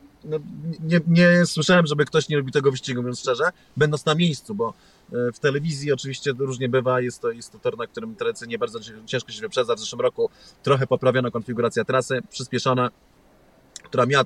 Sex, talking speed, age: male, 180 wpm, 30-49